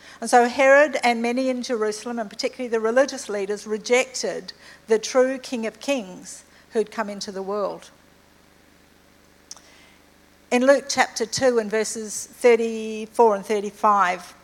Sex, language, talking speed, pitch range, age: female, English, 125 wpm, 210-255 Hz, 50-69